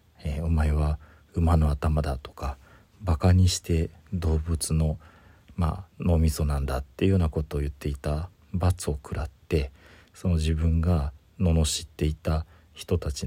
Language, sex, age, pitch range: Japanese, male, 40-59, 75-90 Hz